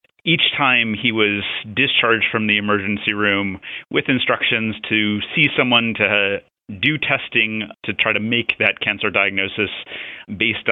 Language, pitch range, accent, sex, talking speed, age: English, 105-120 Hz, American, male, 140 wpm, 30-49